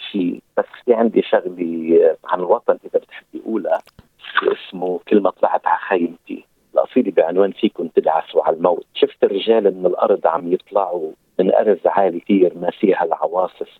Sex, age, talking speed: male, 50-69, 150 wpm